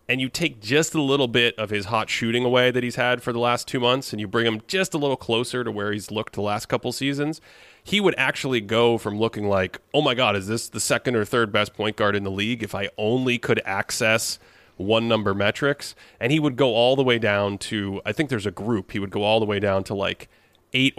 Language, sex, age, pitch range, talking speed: English, male, 30-49, 100-125 Hz, 255 wpm